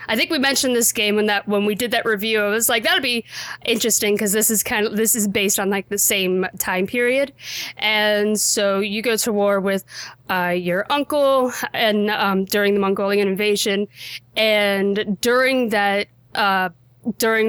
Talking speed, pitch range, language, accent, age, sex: 185 wpm, 185-220 Hz, English, American, 20-39, female